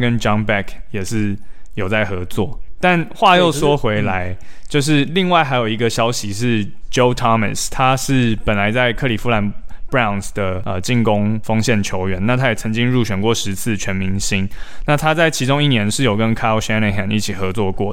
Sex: male